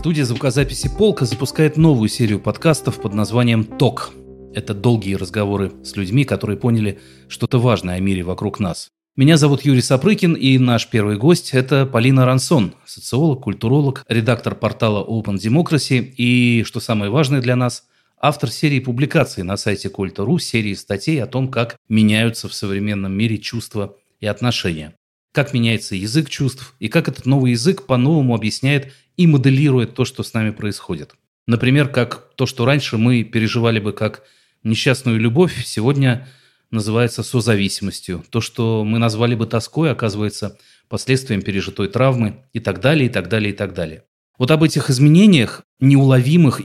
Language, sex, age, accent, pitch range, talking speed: Russian, male, 30-49, native, 105-135 Hz, 155 wpm